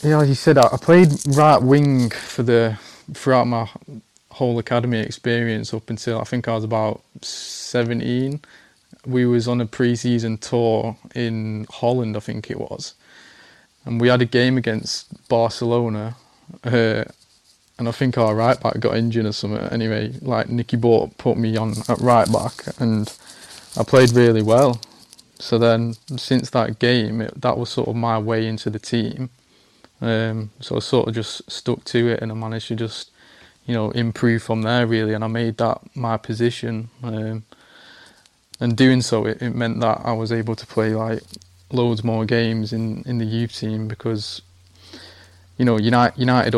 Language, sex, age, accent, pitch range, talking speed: English, male, 20-39, British, 110-120 Hz, 175 wpm